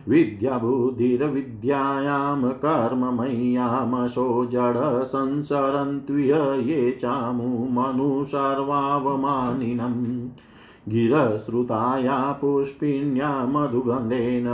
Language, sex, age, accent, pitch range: Hindi, male, 50-69, native, 120-140 Hz